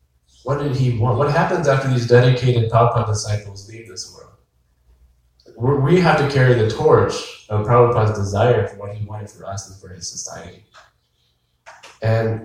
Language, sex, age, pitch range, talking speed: English, male, 20-39, 105-135 Hz, 165 wpm